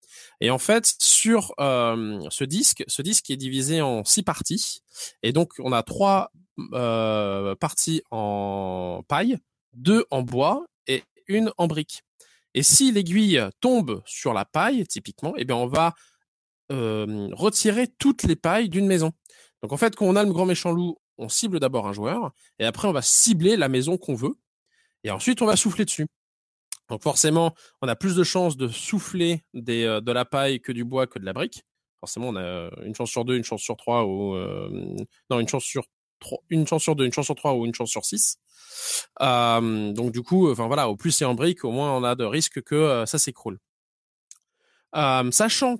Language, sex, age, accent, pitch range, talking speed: French, male, 20-39, French, 120-185 Hz, 200 wpm